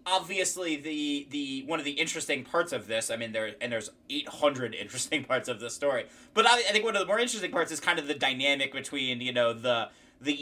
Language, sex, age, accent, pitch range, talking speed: English, male, 20-39, American, 120-160 Hz, 235 wpm